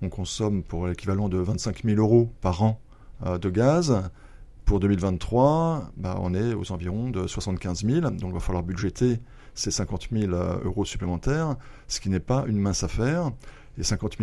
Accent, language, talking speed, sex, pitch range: French, French, 175 wpm, male, 95-125 Hz